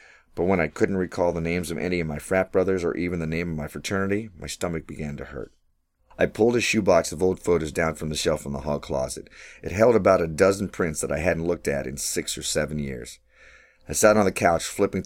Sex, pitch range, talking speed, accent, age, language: male, 75-90 Hz, 245 wpm, American, 40-59, English